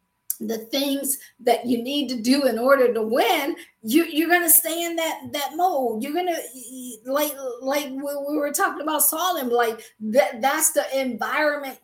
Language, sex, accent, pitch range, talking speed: English, female, American, 240-320 Hz, 165 wpm